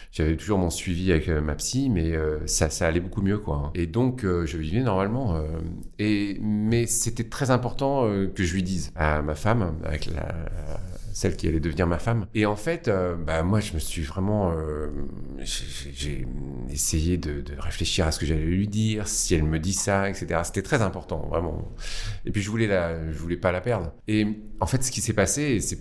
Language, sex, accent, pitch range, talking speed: French, male, French, 80-110 Hz, 225 wpm